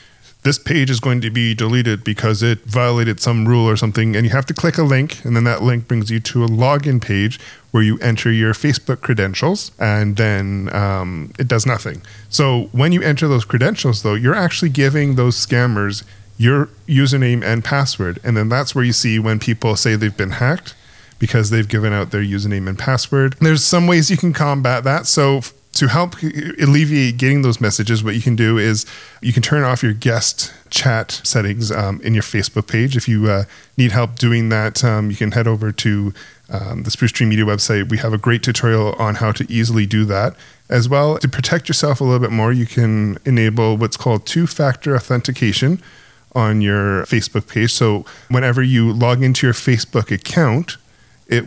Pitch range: 110-130 Hz